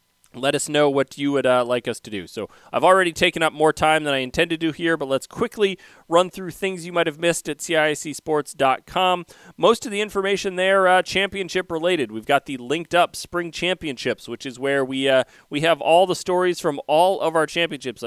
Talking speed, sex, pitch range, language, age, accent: 220 wpm, male, 125-160 Hz, English, 30-49, American